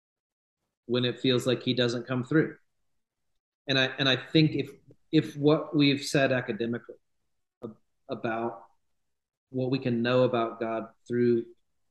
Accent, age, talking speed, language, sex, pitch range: American, 40-59, 140 wpm, English, male, 120-145 Hz